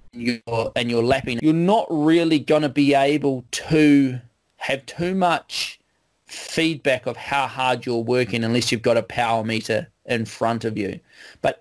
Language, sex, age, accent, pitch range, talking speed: English, male, 30-49, Australian, 115-140 Hz, 165 wpm